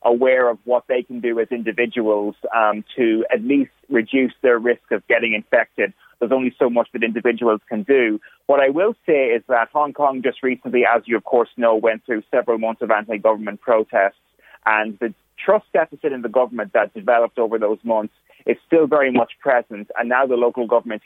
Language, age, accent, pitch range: English, 30-49, British, 110-125 Hz